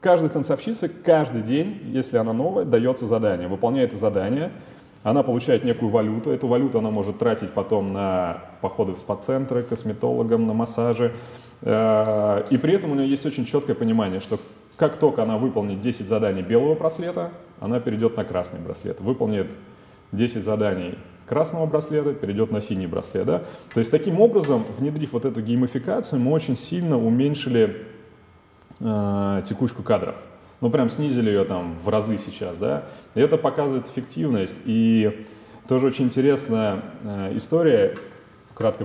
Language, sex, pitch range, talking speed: Russian, male, 100-135 Hz, 145 wpm